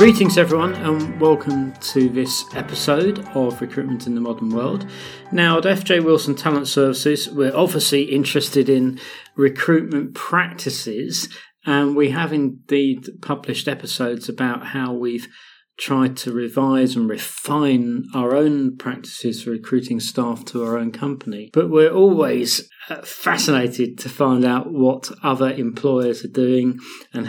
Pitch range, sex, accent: 125-145 Hz, male, British